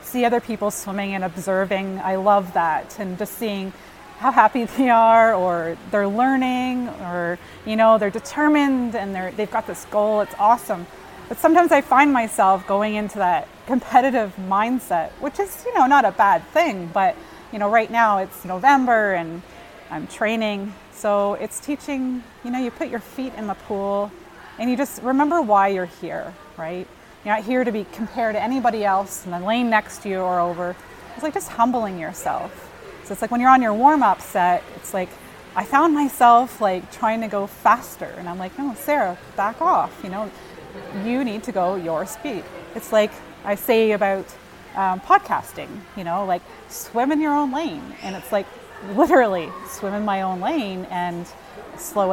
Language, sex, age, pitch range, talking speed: English, female, 30-49, 190-250 Hz, 185 wpm